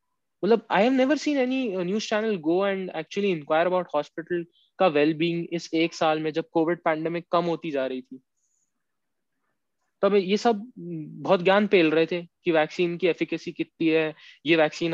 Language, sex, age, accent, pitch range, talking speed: English, male, 20-39, Indian, 160-220 Hz, 185 wpm